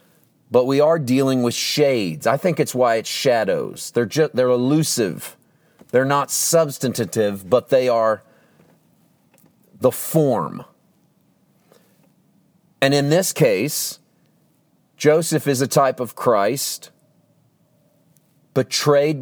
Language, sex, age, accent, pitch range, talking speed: English, male, 40-59, American, 125-155 Hz, 105 wpm